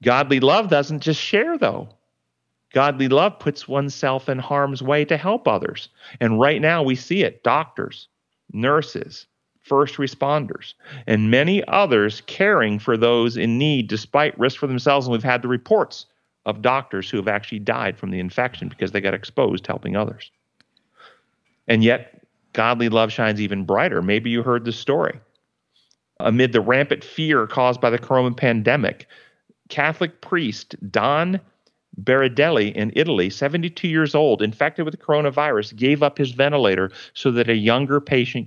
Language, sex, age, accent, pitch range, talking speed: English, male, 40-59, American, 110-140 Hz, 160 wpm